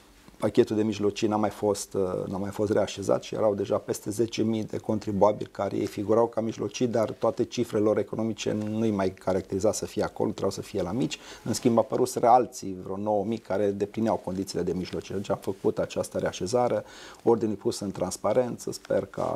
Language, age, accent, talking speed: Romanian, 30-49, native, 190 wpm